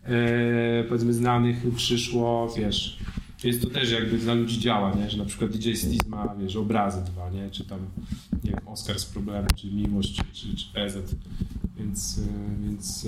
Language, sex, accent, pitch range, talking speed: Polish, male, native, 110-125 Hz, 155 wpm